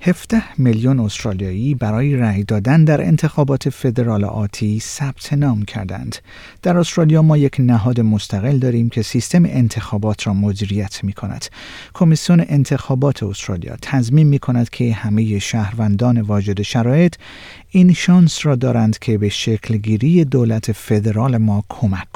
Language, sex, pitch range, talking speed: Persian, male, 110-160 Hz, 135 wpm